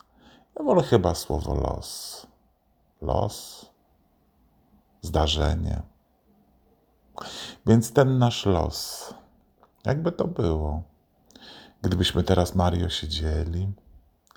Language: Polish